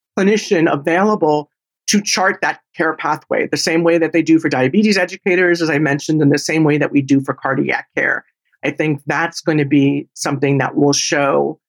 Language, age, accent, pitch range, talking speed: English, 40-59, American, 140-175 Hz, 200 wpm